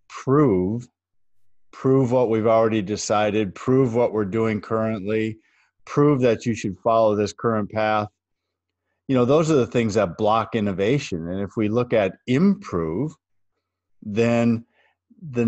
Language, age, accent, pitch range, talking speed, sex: English, 50-69, American, 95-115 Hz, 140 wpm, male